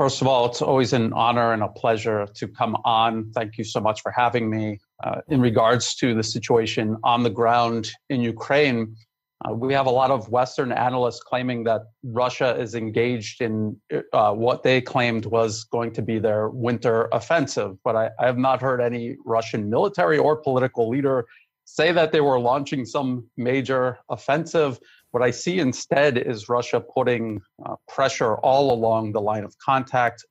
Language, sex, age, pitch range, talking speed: English, male, 40-59, 115-130 Hz, 180 wpm